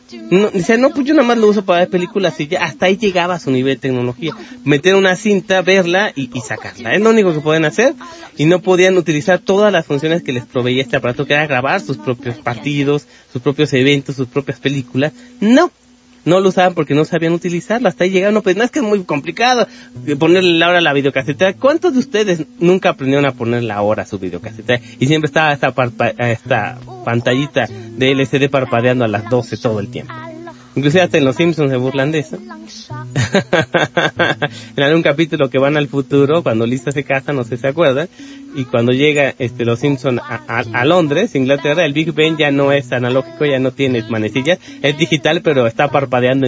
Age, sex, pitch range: 30-49, male, 130-180 Hz